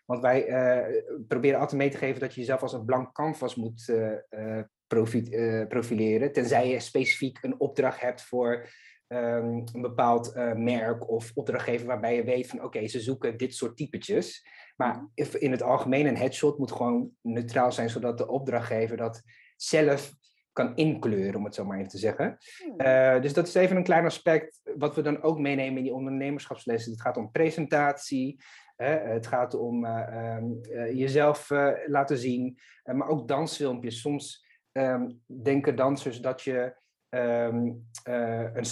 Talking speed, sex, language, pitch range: 155 wpm, male, Dutch, 115-140 Hz